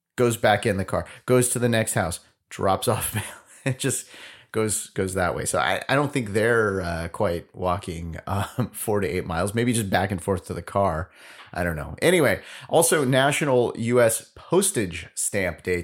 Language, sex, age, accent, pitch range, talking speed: English, male, 30-49, American, 95-130 Hz, 190 wpm